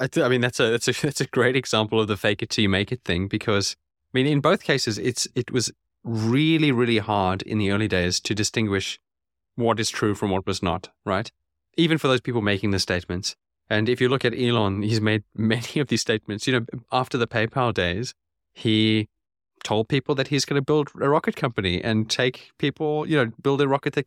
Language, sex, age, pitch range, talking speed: English, male, 20-39, 100-125 Hz, 230 wpm